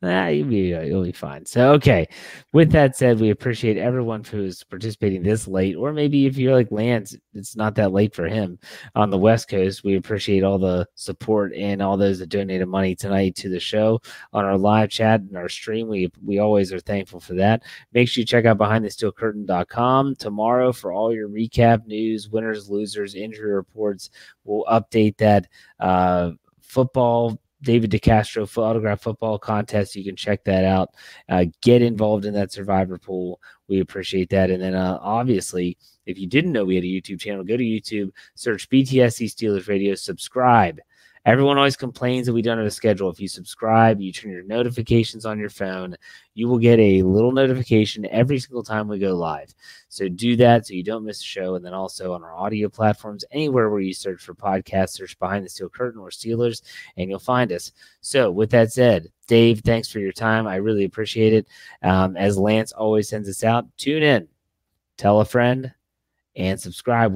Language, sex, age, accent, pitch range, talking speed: English, male, 30-49, American, 95-115 Hz, 195 wpm